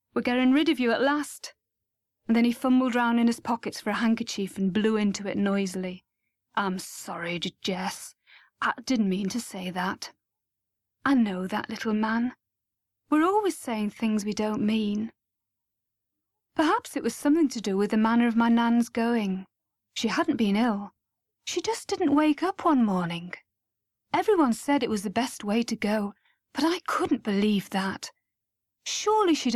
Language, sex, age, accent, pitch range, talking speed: English, female, 40-59, British, 200-270 Hz, 170 wpm